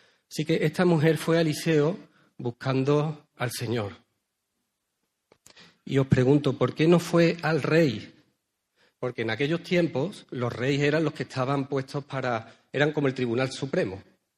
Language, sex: Spanish, male